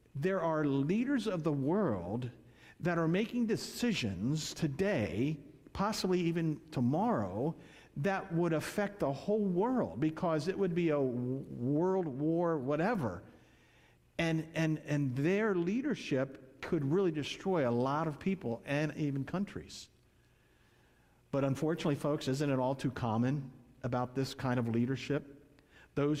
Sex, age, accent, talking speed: male, 50-69, American, 130 wpm